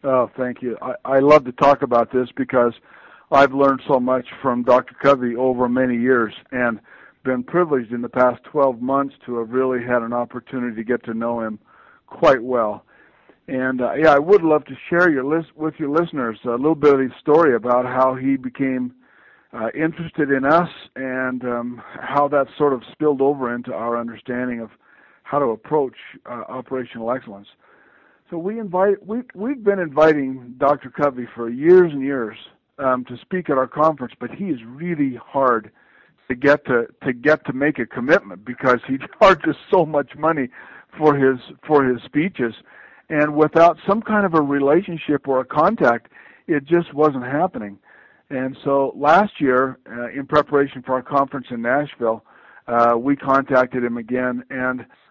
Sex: male